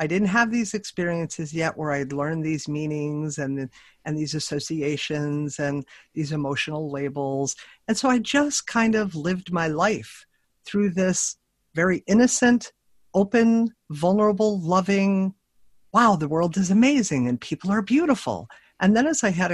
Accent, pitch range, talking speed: American, 150-205 Hz, 150 wpm